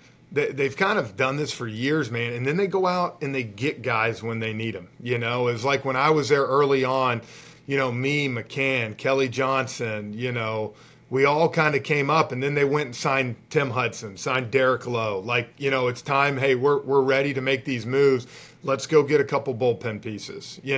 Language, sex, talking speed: English, male, 220 wpm